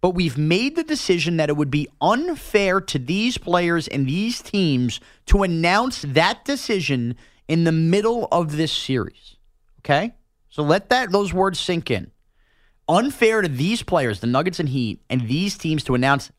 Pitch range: 130-190 Hz